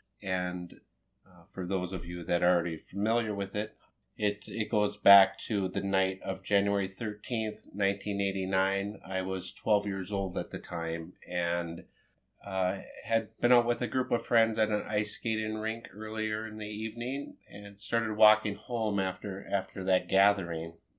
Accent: American